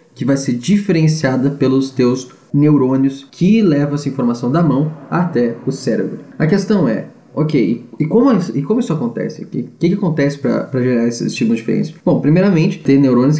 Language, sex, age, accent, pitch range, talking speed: Portuguese, male, 10-29, Brazilian, 125-155 Hz, 190 wpm